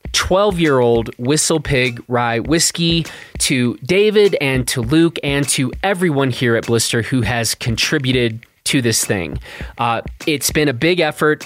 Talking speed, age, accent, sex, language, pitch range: 155 wpm, 30-49, American, male, English, 120-165 Hz